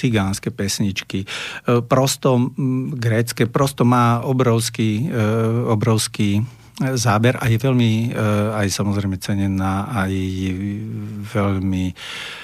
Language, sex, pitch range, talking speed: Slovak, male, 100-120 Hz, 80 wpm